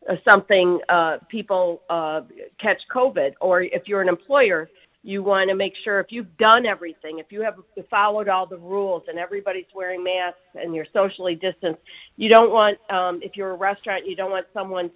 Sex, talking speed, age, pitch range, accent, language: female, 190 wpm, 50-69, 160-205 Hz, American, English